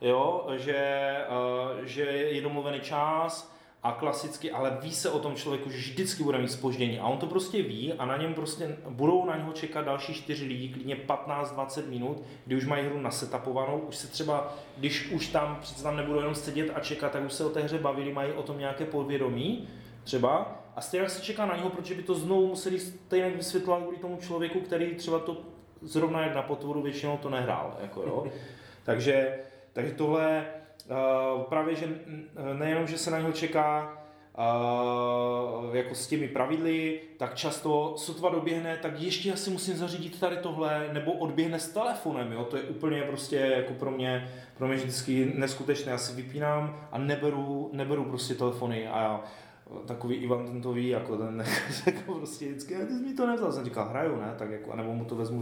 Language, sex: Czech, male